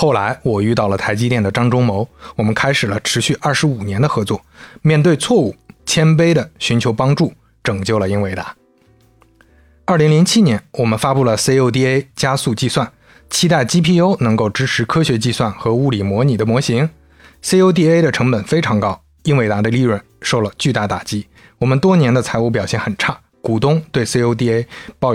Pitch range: 105-140 Hz